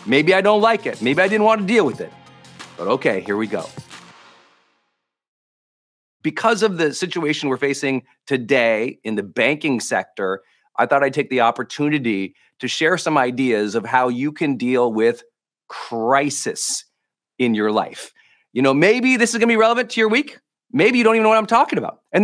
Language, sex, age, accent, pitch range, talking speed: English, male, 40-59, American, 135-210 Hz, 190 wpm